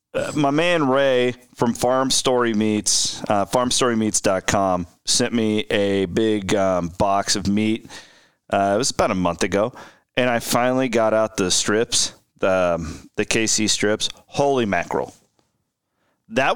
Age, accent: 40-59, American